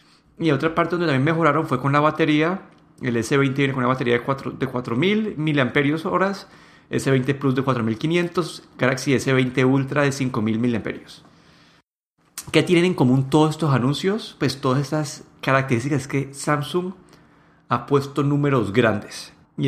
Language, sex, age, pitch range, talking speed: Spanish, male, 30-49, 130-150 Hz, 150 wpm